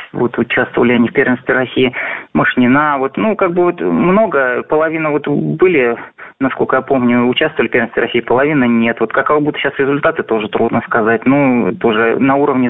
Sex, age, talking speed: male, 20-39, 170 wpm